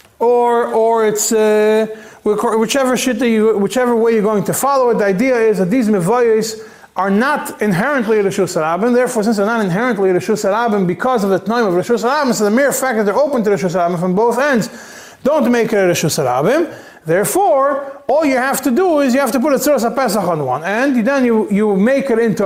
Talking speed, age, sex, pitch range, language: 215 wpm, 30-49, male, 195-250 Hz, English